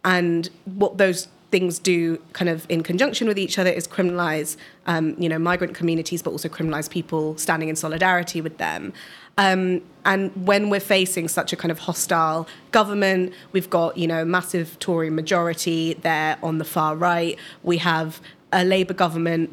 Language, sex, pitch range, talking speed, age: English, female, 165-185 Hz, 170 wpm, 20-39